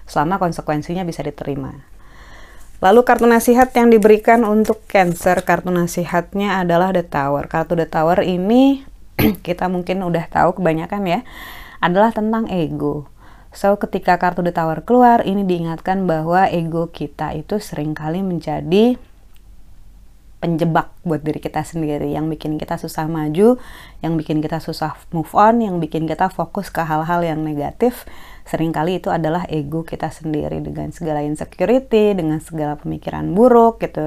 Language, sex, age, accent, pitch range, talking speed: Indonesian, female, 20-39, native, 155-195 Hz, 145 wpm